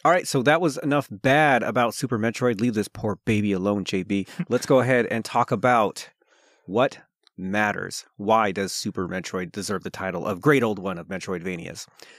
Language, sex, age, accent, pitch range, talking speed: English, male, 30-49, American, 95-120 Hz, 180 wpm